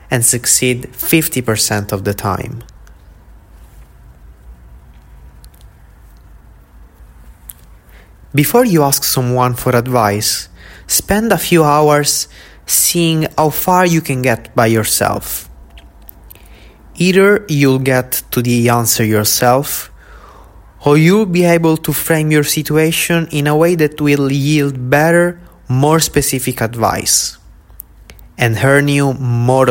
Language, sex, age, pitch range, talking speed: English, male, 20-39, 100-150 Hz, 105 wpm